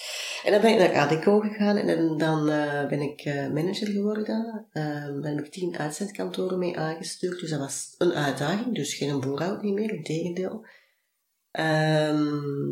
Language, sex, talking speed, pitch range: Dutch, female, 170 wpm, 145-175 Hz